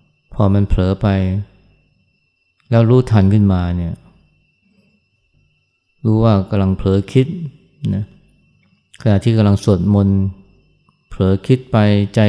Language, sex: Thai, male